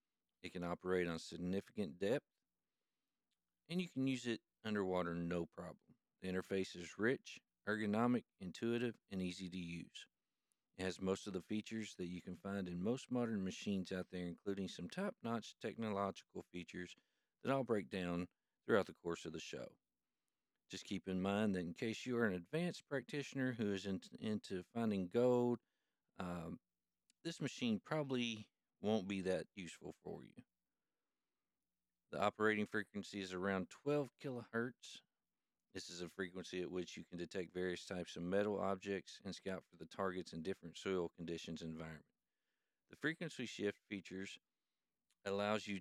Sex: male